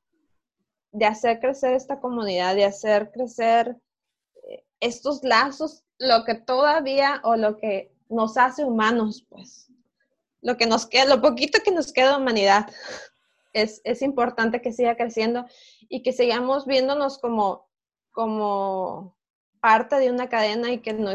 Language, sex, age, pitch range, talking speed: Spanish, female, 20-39, 215-265 Hz, 140 wpm